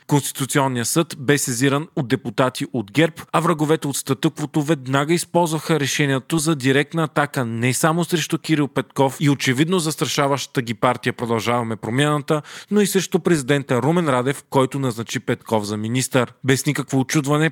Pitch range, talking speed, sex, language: 130-160 Hz, 150 wpm, male, Bulgarian